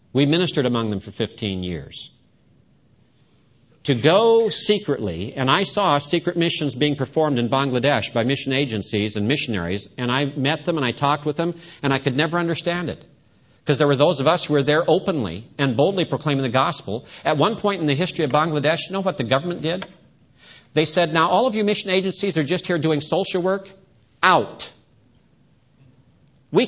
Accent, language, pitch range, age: American, English, 130-175 Hz, 50-69